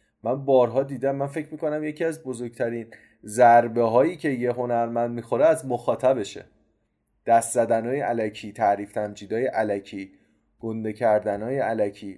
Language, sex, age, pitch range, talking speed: Persian, male, 20-39, 115-145 Hz, 130 wpm